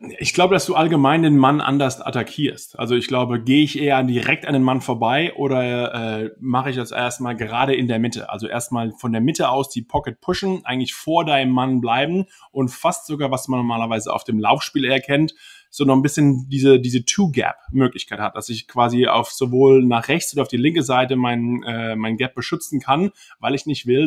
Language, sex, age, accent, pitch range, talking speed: German, male, 20-39, German, 120-145 Hz, 215 wpm